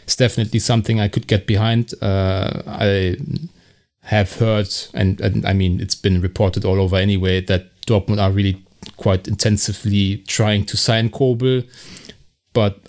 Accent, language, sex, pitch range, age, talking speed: German, English, male, 95-110 Hz, 30-49, 150 wpm